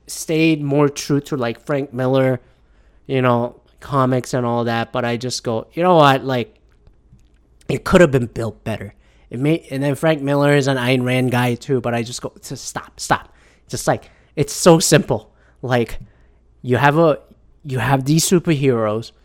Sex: male